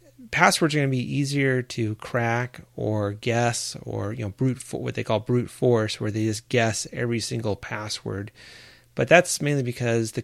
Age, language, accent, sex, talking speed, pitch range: 30-49, English, American, male, 190 wpm, 110-130 Hz